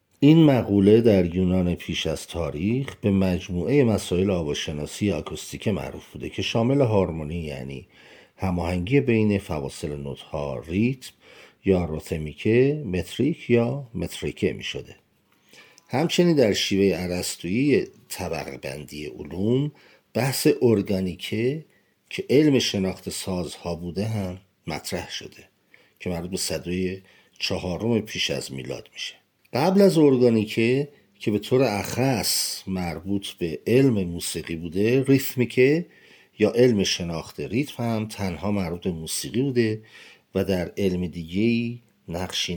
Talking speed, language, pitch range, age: 120 wpm, Persian, 90-120 Hz, 50-69